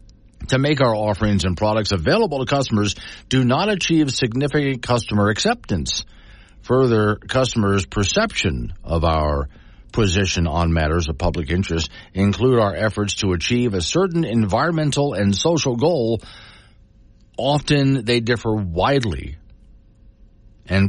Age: 50-69